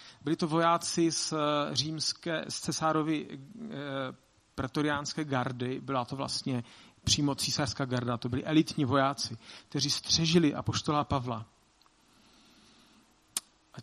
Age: 40-59